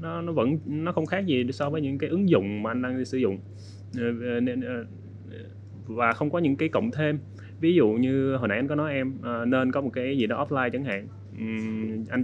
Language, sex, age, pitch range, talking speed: Vietnamese, male, 20-39, 105-150 Hz, 215 wpm